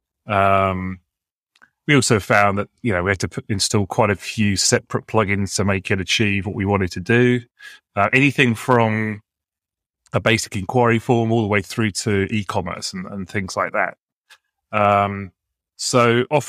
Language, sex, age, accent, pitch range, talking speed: English, male, 30-49, British, 95-115 Hz, 165 wpm